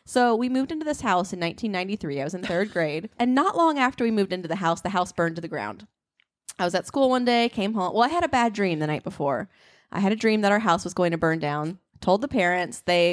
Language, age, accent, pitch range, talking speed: English, 20-39, American, 165-230 Hz, 280 wpm